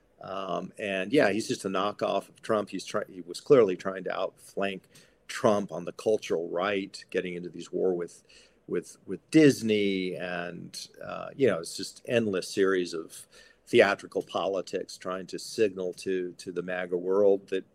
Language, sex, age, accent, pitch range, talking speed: English, male, 50-69, American, 95-130 Hz, 170 wpm